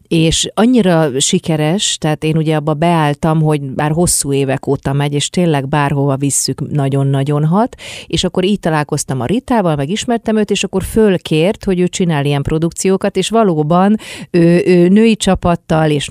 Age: 30-49